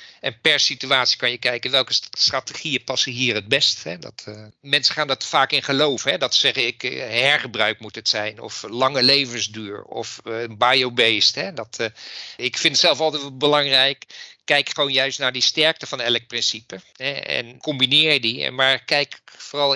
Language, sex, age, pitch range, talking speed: Dutch, male, 50-69, 125-145 Hz, 190 wpm